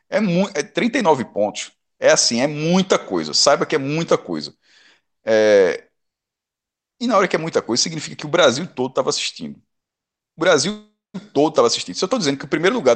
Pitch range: 140-195 Hz